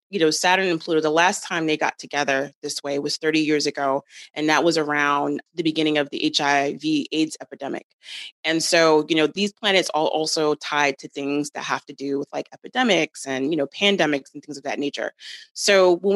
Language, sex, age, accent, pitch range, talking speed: English, female, 30-49, American, 150-185 Hz, 210 wpm